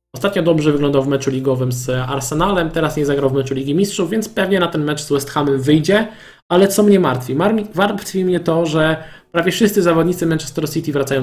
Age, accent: 20-39, native